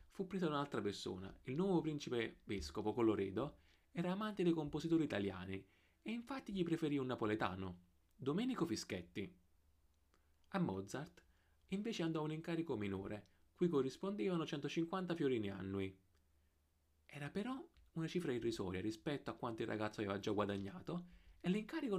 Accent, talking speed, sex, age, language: native, 130 wpm, male, 30-49, Italian